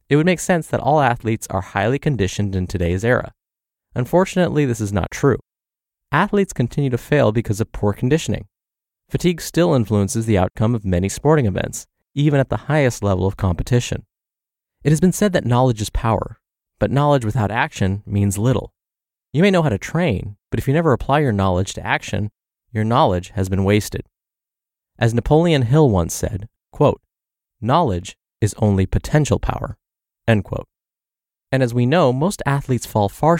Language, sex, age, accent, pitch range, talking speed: English, male, 30-49, American, 100-140 Hz, 170 wpm